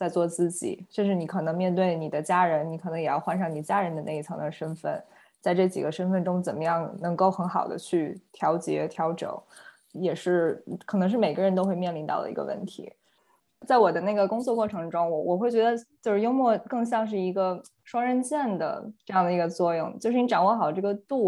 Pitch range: 170-215 Hz